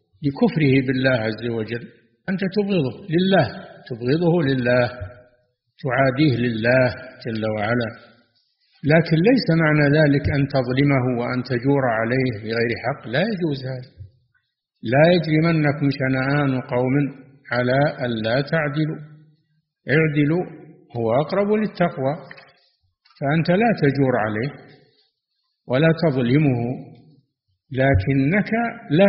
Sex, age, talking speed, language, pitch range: male, 50-69, 95 wpm, Arabic, 120-155 Hz